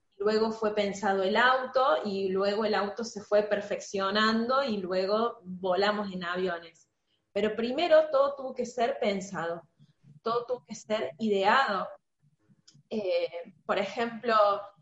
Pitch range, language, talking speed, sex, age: 190-250 Hz, Spanish, 130 wpm, female, 20-39